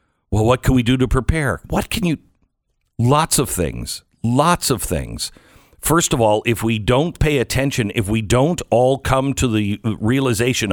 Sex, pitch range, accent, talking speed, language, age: male, 100-140 Hz, American, 180 wpm, English, 50-69